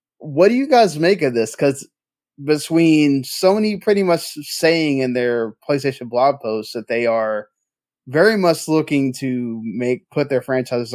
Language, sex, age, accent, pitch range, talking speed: English, male, 20-39, American, 125-155 Hz, 160 wpm